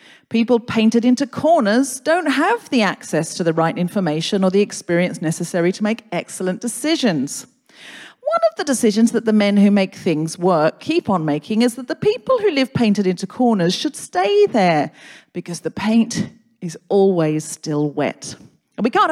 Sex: female